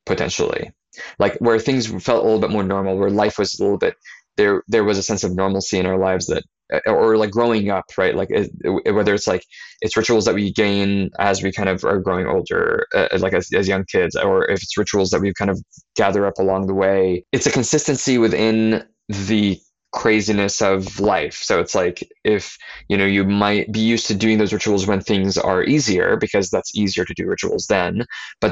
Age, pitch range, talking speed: 20-39, 95-115 Hz, 215 wpm